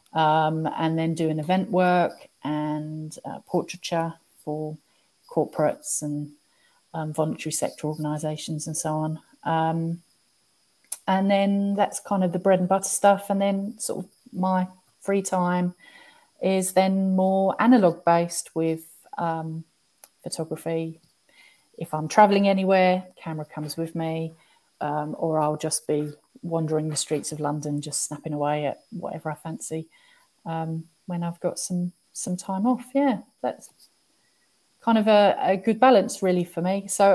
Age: 30-49